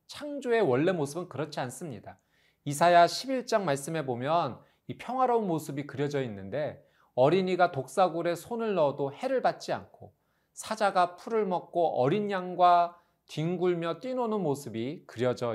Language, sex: Korean, male